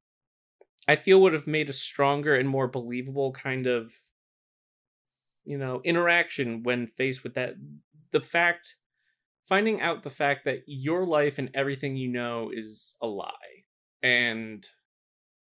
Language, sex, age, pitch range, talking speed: English, male, 20-39, 130-170 Hz, 140 wpm